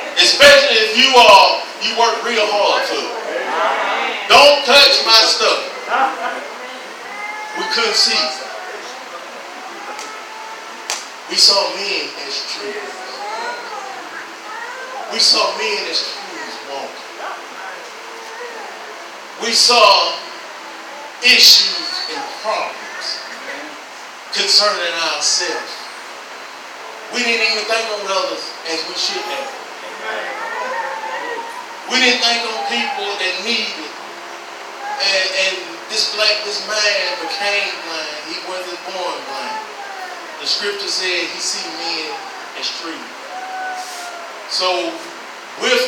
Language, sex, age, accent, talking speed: English, male, 40-59, American, 95 wpm